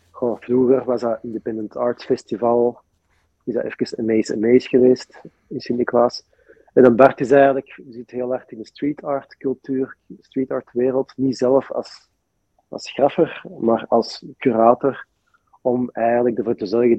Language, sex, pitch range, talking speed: Dutch, male, 105-125 Hz, 165 wpm